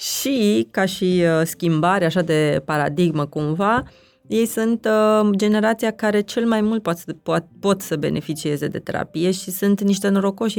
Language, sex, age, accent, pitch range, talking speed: Romanian, female, 20-39, native, 170-215 Hz, 165 wpm